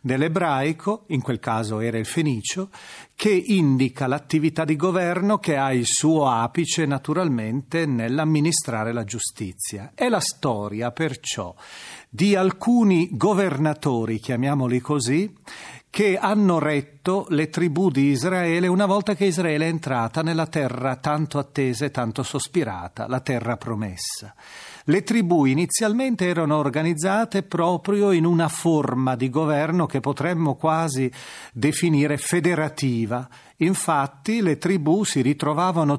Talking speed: 125 wpm